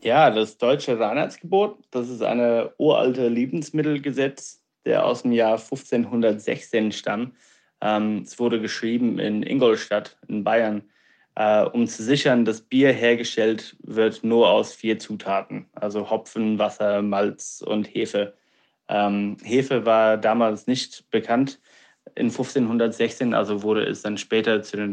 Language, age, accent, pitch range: German, 20-39, German, 110-125 Hz